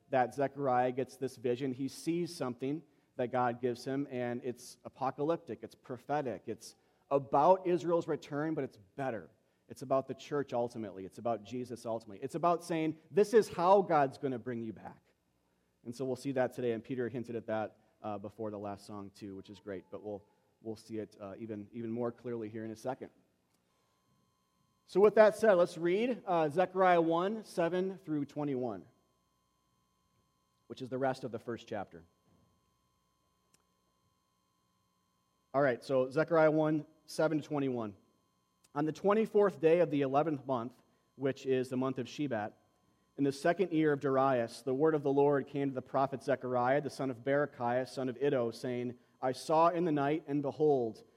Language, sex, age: English, male, 30-49